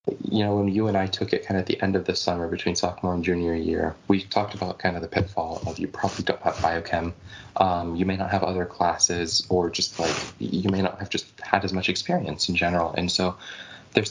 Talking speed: 245 wpm